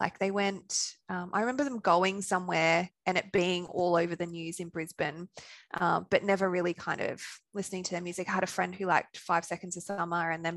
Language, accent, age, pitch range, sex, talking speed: English, Australian, 20-39, 175-200 Hz, female, 225 wpm